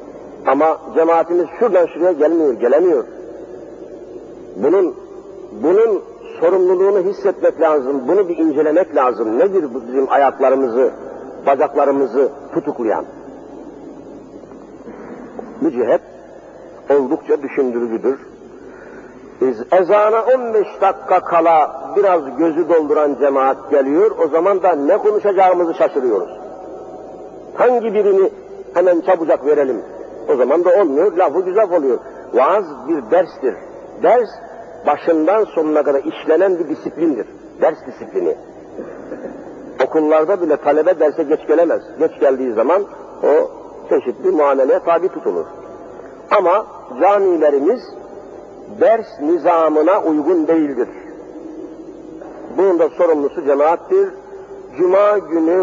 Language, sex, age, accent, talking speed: Turkish, male, 50-69, native, 95 wpm